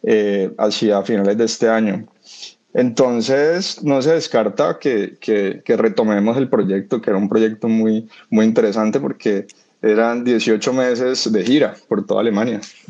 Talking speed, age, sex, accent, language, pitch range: 150 wpm, 20-39, male, Colombian, Spanish, 105-125 Hz